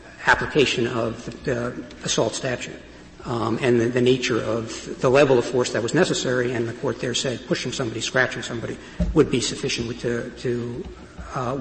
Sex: male